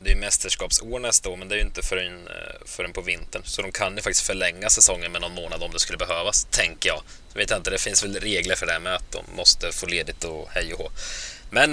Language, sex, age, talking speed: Swedish, male, 20-39, 275 wpm